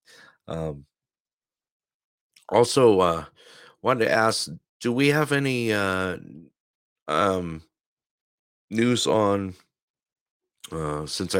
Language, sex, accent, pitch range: English, male, American, 85-120 Hz